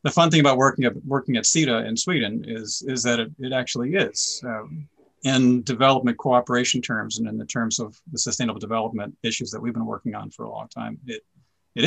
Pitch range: 115-130 Hz